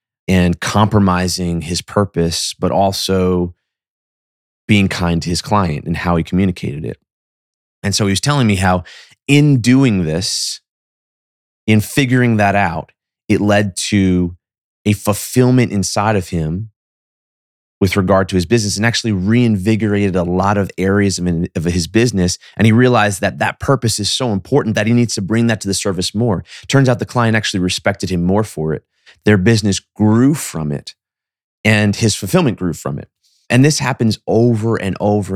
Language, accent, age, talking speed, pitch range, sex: English, American, 30-49, 170 wpm, 90-110 Hz, male